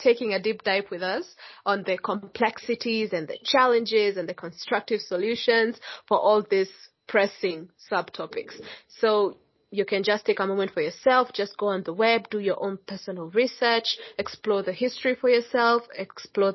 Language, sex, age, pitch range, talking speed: English, female, 20-39, 190-235 Hz, 165 wpm